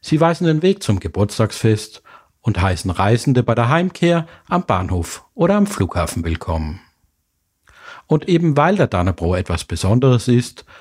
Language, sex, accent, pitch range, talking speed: German, male, German, 90-150 Hz, 145 wpm